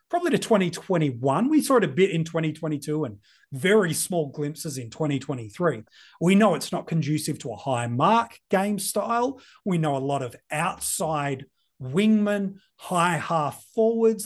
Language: English